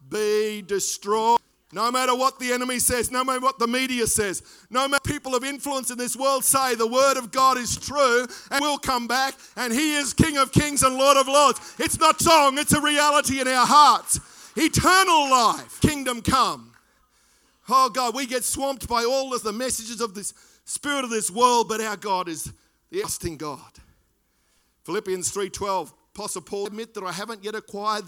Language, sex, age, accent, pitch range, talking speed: English, male, 50-69, Australian, 210-270 Hz, 195 wpm